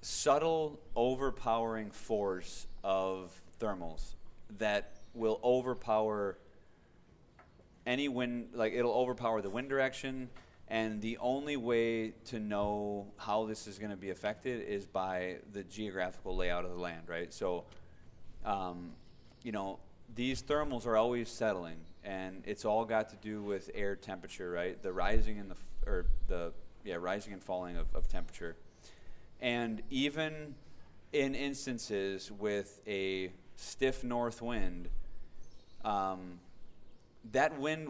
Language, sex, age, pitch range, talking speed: English, male, 30-49, 90-120 Hz, 125 wpm